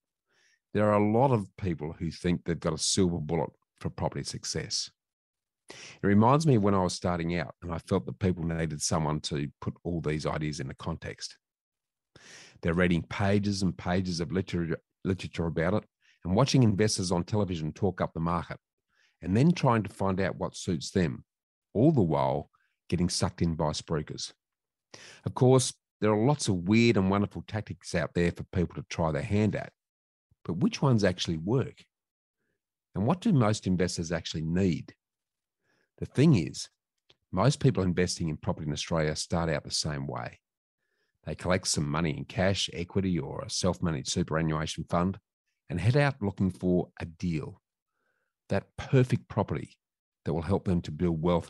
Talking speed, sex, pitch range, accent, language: 175 wpm, male, 85-105 Hz, Australian, English